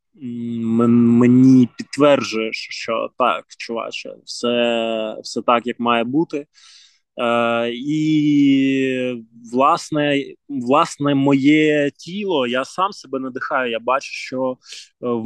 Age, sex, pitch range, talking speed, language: 20-39, male, 125-140 Hz, 100 wpm, Ukrainian